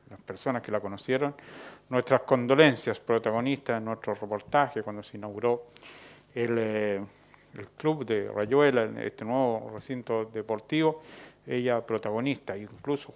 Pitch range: 110-140 Hz